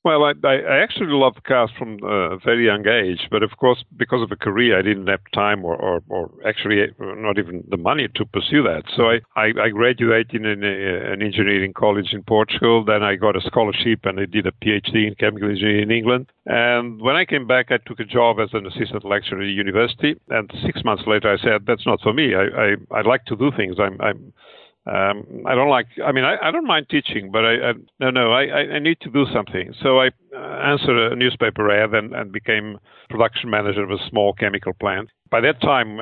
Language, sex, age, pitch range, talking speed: English, male, 50-69, 100-115 Hz, 225 wpm